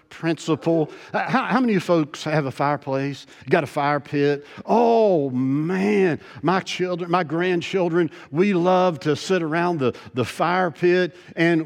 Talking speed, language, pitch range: 155 wpm, English, 140-190 Hz